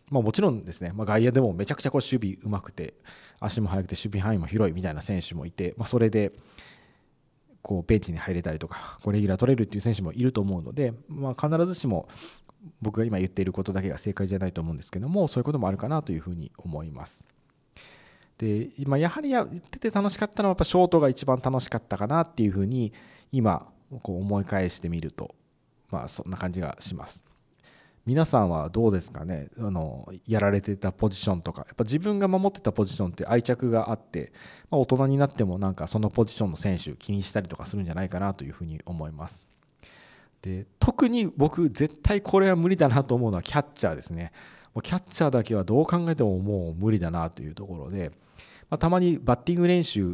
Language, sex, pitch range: Japanese, male, 95-135 Hz